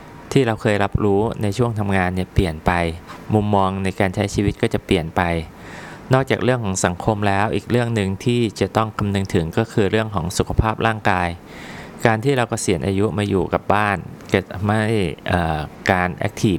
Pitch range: 95-110 Hz